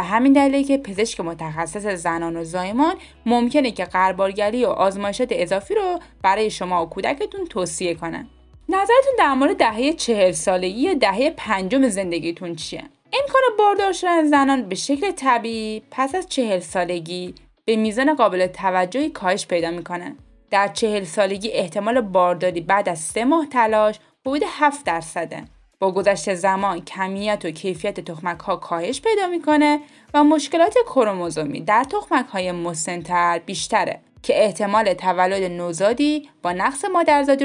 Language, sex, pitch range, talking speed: Persian, female, 185-295 Hz, 145 wpm